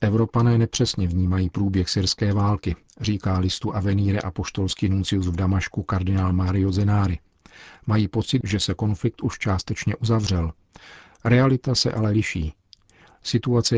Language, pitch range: Czech, 95-110 Hz